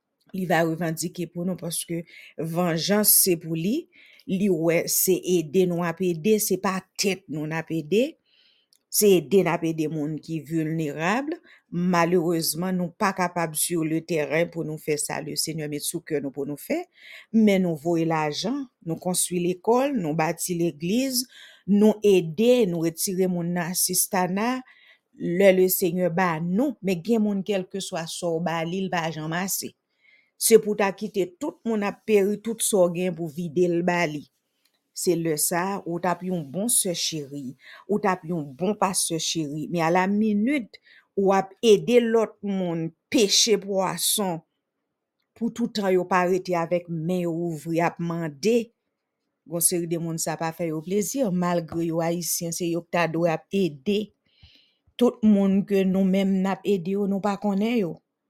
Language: English